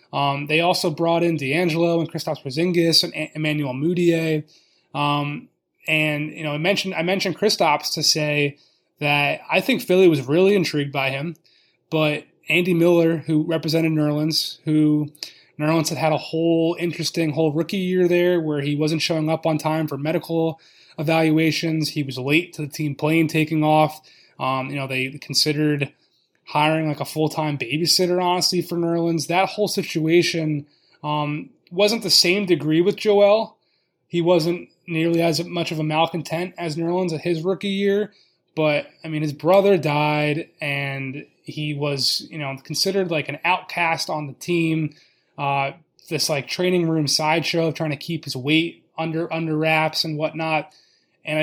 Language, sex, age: English, male, 20-39